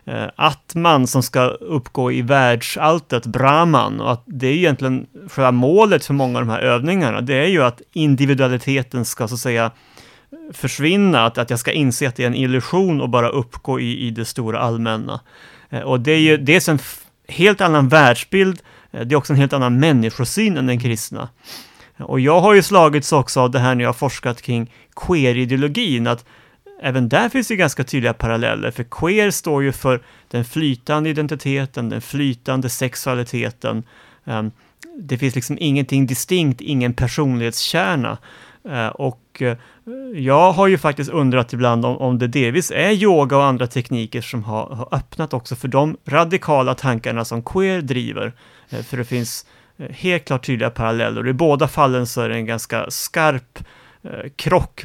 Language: Swedish